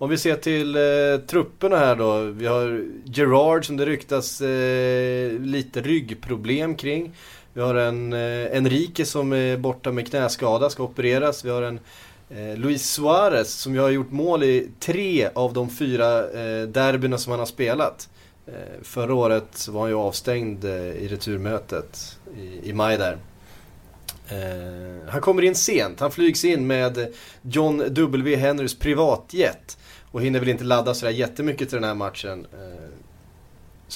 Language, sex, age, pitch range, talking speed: Swedish, male, 30-49, 110-145 Hz, 165 wpm